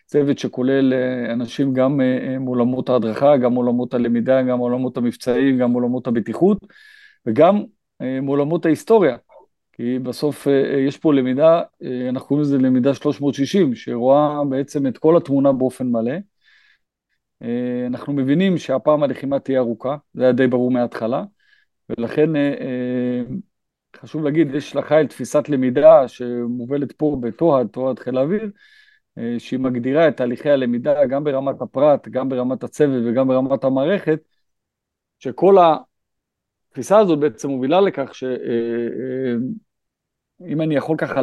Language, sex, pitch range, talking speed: Hebrew, male, 125-160 Hz, 120 wpm